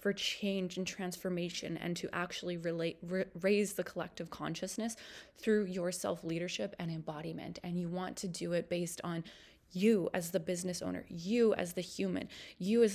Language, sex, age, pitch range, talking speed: English, female, 20-39, 175-195 Hz, 170 wpm